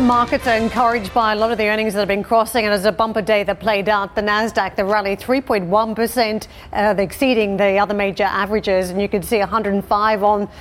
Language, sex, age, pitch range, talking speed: English, female, 40-59, 210-235 Hz, 215 wpm